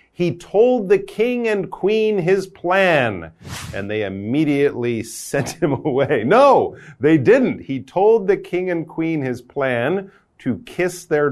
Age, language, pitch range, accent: 40-59, Chinese, 115-175 Hz, American